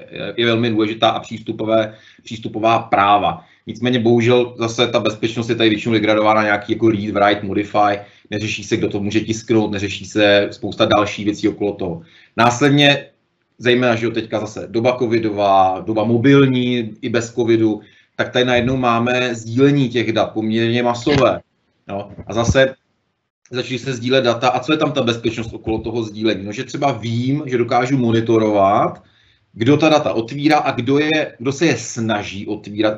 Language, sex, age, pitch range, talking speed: Czech, male, 30-49, 110-135 Hz, 165 wpm